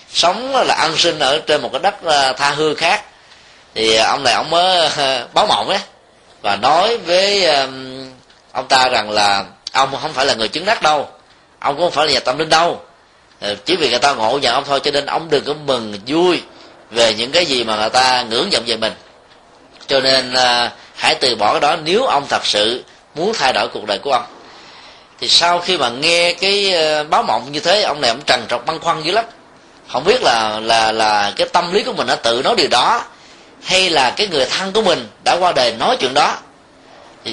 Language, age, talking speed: Vietnamese, 20-39, 220 wpm